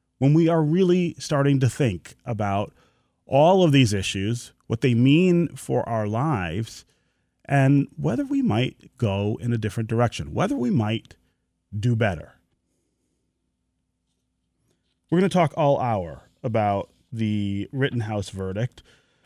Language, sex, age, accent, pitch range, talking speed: English, male, 30-49, American, 100-140 Hz, 130 wpm